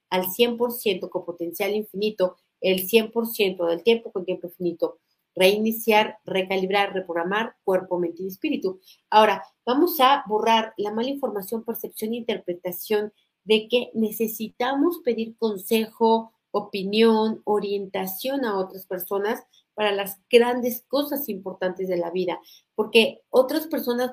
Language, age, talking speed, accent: Spanish, 40-59, 125 wpm, Mexican